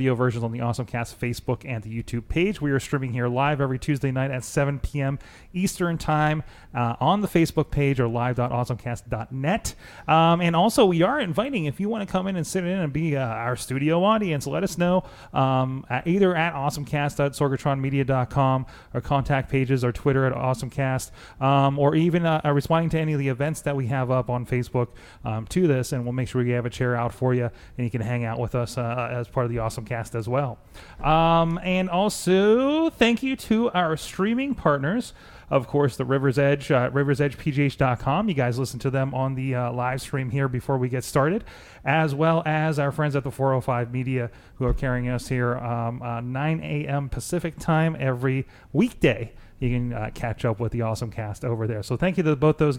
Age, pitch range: 30-49, 125-155 Hz